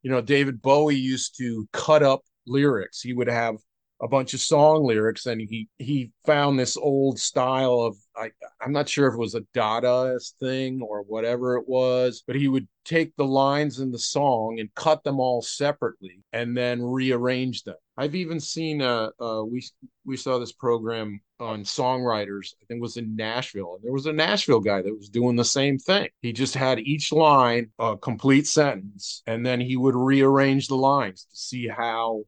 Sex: male